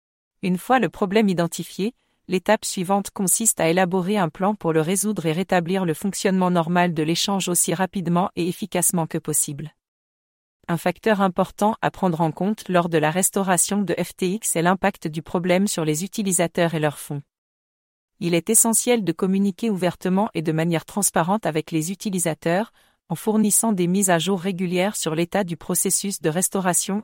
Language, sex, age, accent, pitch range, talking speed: English, female, 40-59, French, 165-195 Hz, 170 wpm